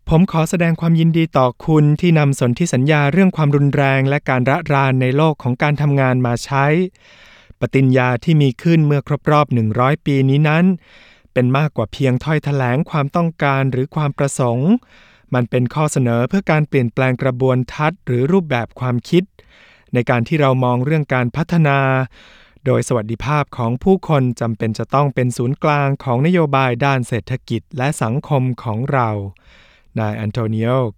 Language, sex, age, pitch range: Thai, male, 20-39, 120-145 Hz